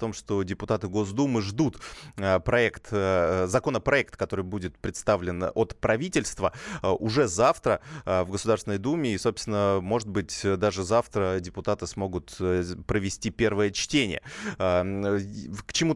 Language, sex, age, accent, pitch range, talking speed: Russian, male, 20-39, native, 100-125 Hz, 115 wpm